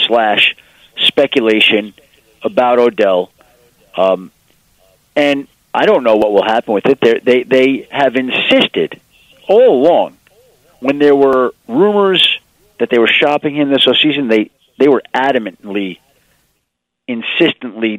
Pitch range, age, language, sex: 115-150 Hz, 50-69, English, male